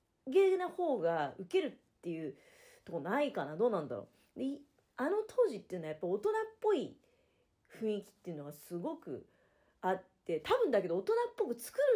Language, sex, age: Japanese, female, 40-59